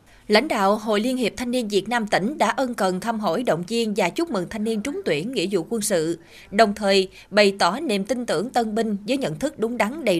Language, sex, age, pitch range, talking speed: Vietnamese, female, 20-39, 190-245 Hz, 255 wpm